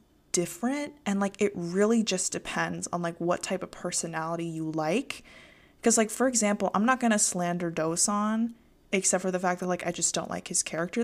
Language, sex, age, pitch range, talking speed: English, female, 20-39, 170-200 Hz, 195 wpm